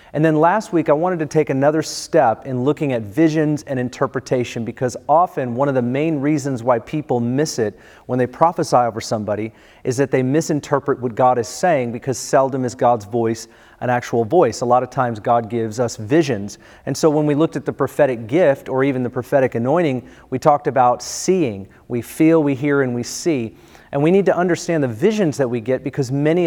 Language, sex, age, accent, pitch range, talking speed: English, male, 30-49, American, 125-160 Hz, 210 wpm